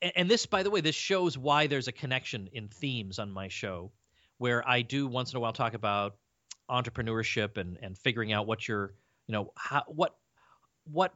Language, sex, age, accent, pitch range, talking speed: English, male, 40-59, American, 115-155 Hz, 200 wpm